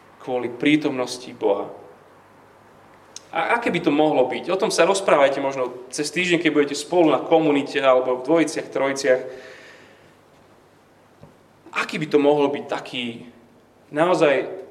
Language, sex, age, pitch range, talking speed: Slovak, male, 30-49, 130-165 Hz, 130 wpm